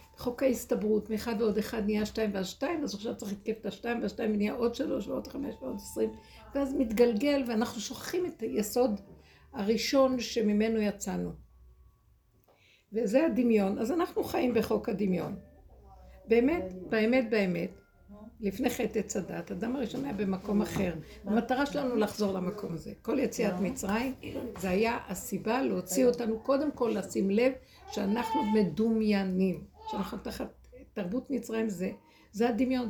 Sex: female